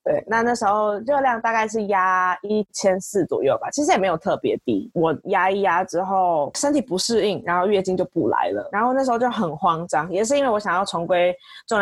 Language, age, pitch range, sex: Chinese, 20-39, 180-220 Hz, female